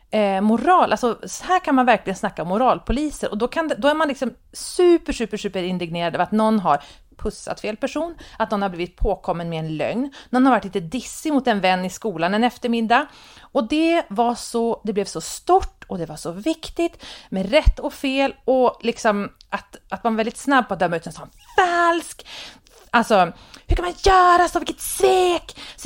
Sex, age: female, 30-49